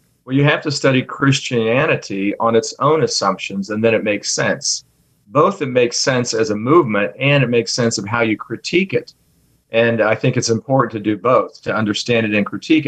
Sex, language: male, English